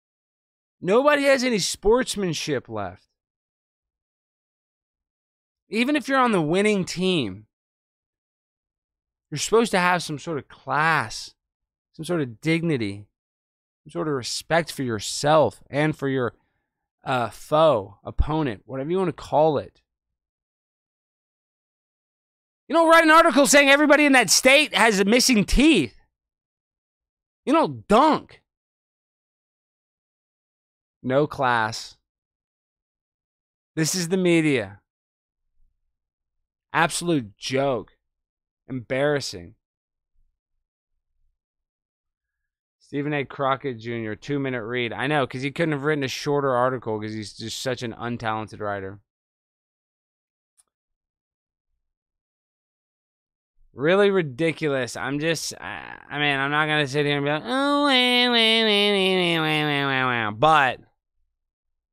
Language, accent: English, American